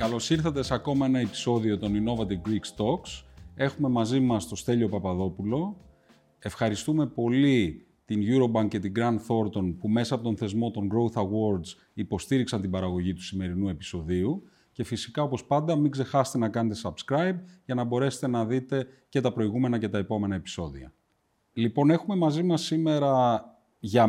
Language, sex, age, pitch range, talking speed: Greek, male, 30-49, 95-120 Hz, 160 wpm